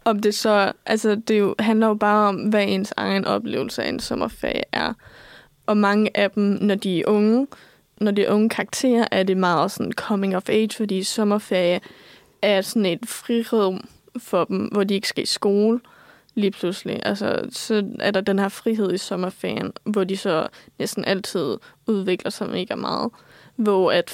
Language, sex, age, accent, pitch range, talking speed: Danish, female, 20-39, native, 195-220 Hz, 185 wpm